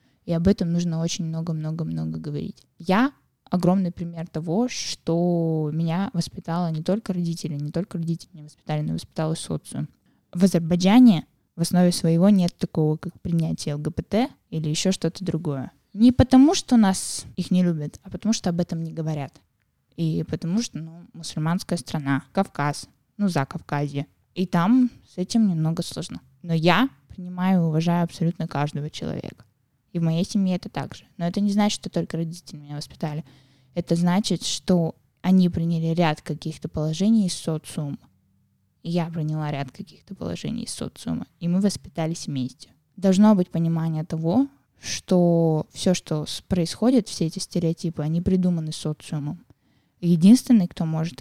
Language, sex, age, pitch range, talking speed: Russian, female, 20-39, 155-185 Hz, 155 wpm